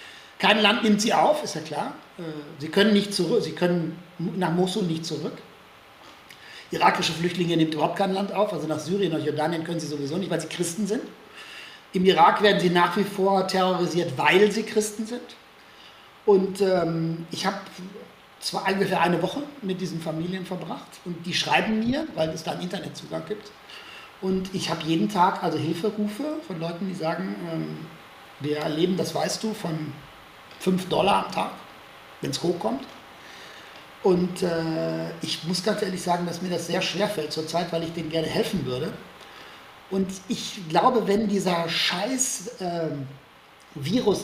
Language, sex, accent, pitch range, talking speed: German, male, German, 165-205 Hz, 170 wpm